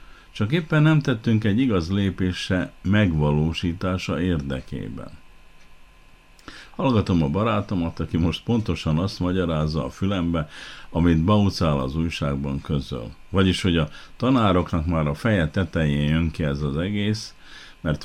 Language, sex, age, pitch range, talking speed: Hungarian, male, 50-69, 80-95 Hz, 125 wpm